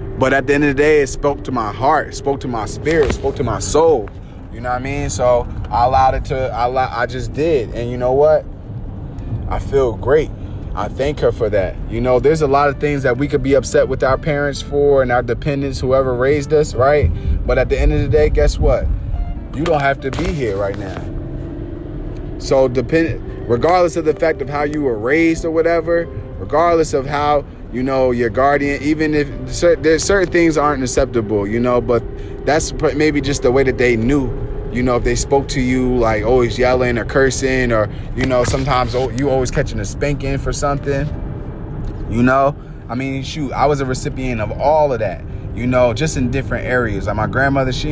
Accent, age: American, 20-39